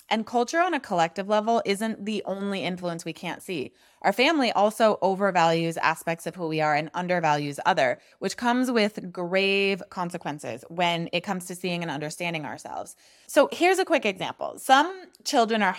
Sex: female